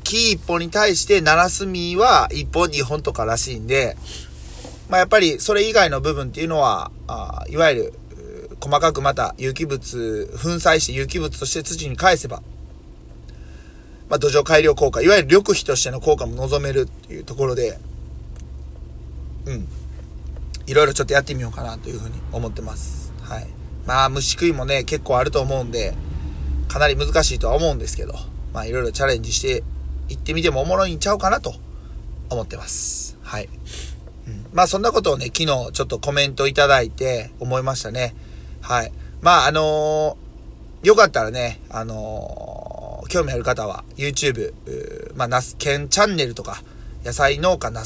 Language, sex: Japanese, male